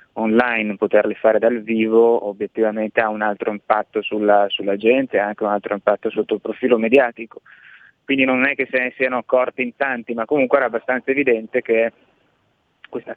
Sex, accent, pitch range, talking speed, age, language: male, native, 110-125 Hz, 180 wpm, 20-39, Italian